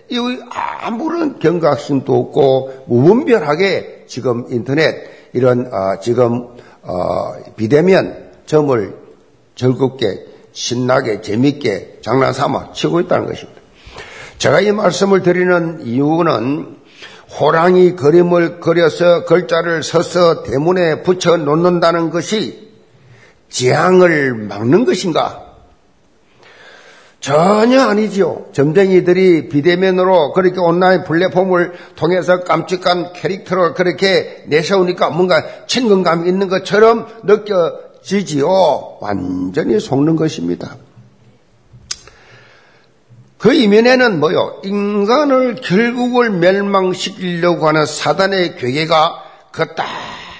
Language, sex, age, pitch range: Korean, male, 50-69, 150-200 Hz